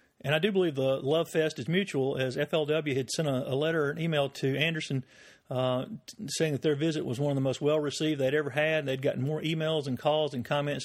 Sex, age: male, 50-69